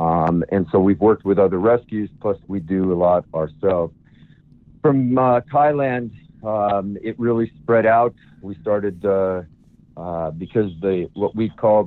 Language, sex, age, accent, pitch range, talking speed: English, male, 50-69, American, 85-110 Hz, 155 wpm